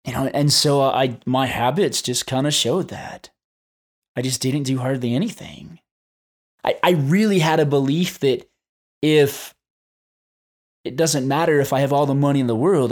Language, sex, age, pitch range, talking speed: English, male, 20-39, 120-145 Hz, 165 wpm